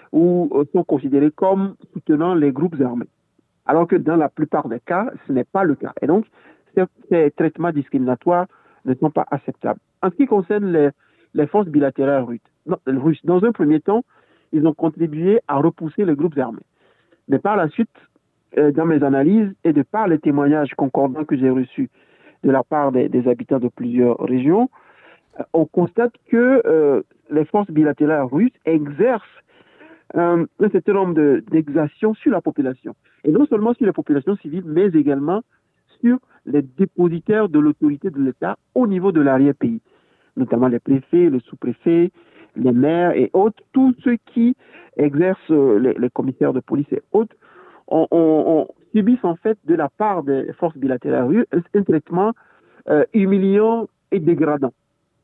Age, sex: 60-79, male